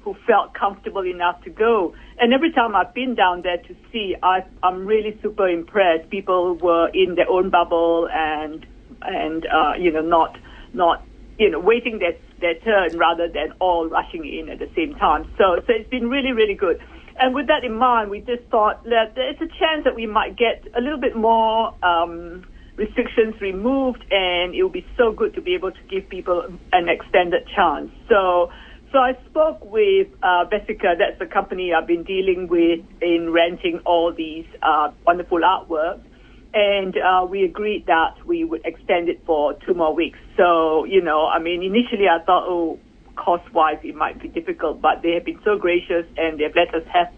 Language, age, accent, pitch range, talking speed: English, 50-69, British, 175-245 Hz, 195 wpm